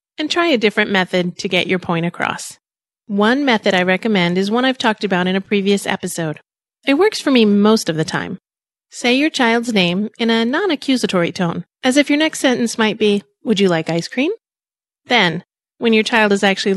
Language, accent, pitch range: English, American, 185-245 Hz